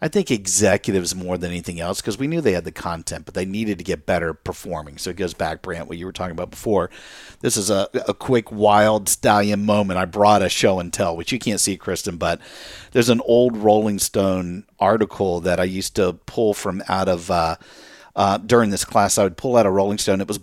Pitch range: 90-110 Hz